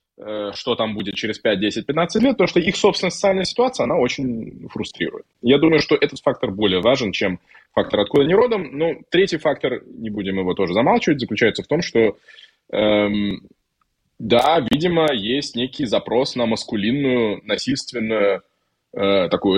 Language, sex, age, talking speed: Russian, male, 20-39, 155 wpm